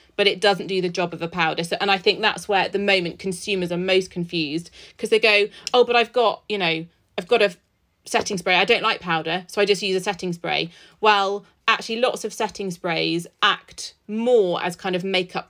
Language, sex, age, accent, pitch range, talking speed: English, female, 30-49, British, 175-205 Hz, 225 wpm